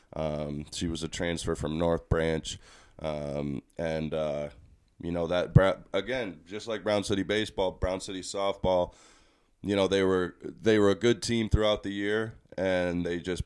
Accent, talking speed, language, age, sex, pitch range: American, 170 wpm, English, 20-39, male, 85-100 Hz